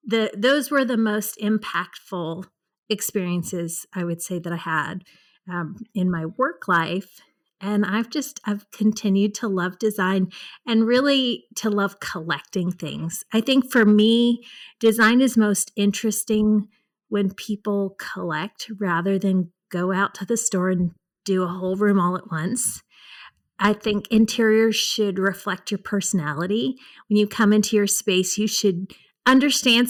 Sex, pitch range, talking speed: female, 185-230 Hz, 145 wpm